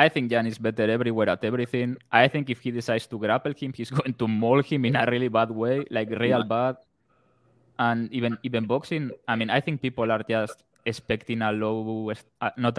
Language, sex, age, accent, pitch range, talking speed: English, male, 20-39, Spanish, 110-130 Hz, 205 wpm